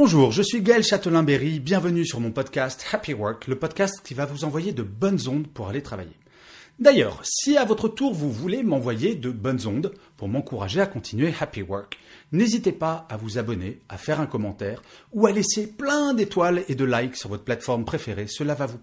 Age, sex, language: 30-49, male, French